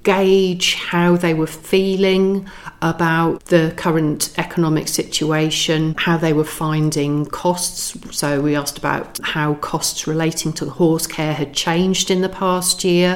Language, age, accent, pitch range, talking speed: English, 40-59, British, 145-175 Hz, 140 wpm